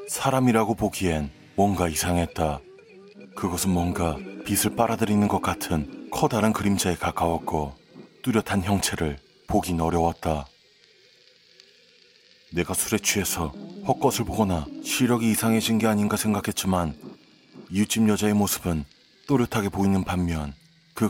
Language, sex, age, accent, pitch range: Korean, male, 30-49, native, 90-115 Hz